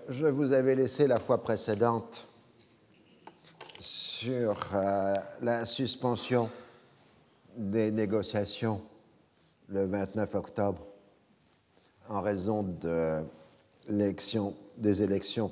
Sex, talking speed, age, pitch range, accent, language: male, 85 wpm, 50-69, 105-125 Hz, French, French